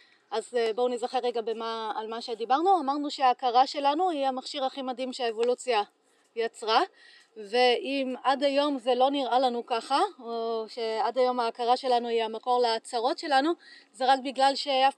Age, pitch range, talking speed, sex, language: 30-49, 240-285 Hz, 150 wpm, female, Hebrew